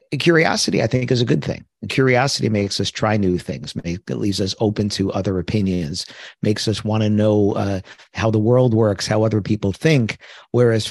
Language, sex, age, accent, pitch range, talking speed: English, male, 50-69, American, 100-125 Hz, 180 wpm